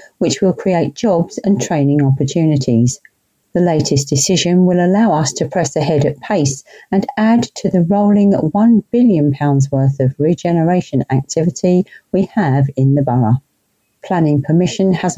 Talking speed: 145 wpm